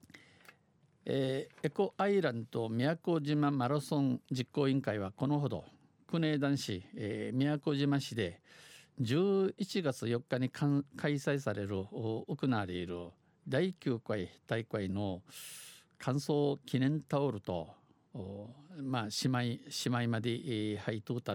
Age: 50-69